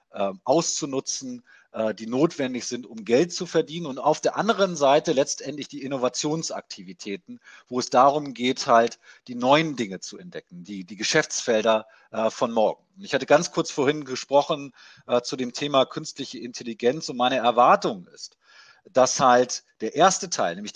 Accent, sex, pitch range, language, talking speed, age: German, male, 115-155 Hz, German, 150 wpm, 40-59